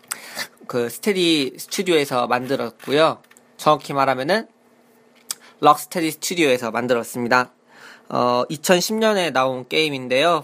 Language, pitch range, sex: Korean, 135-200 Hz, male